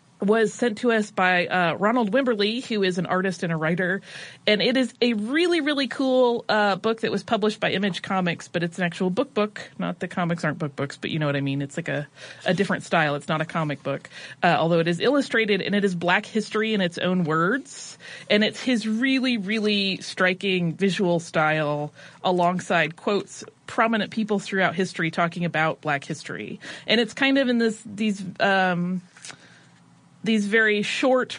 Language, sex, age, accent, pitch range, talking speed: English, female, 30-49, American, 165-215 Hz, 195 wpm